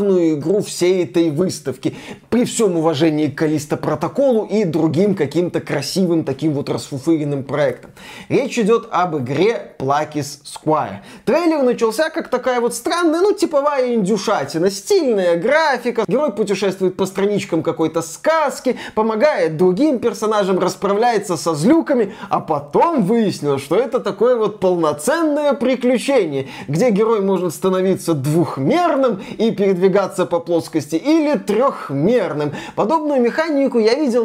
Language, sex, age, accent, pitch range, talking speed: Russian, male, 20-39, native, 170-245 Hz, 125 wpm